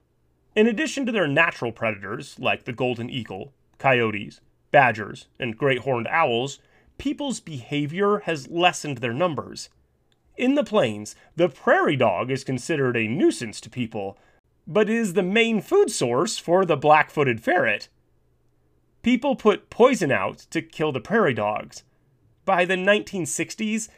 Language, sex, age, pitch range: English, male, 30-49, 125-190 Hz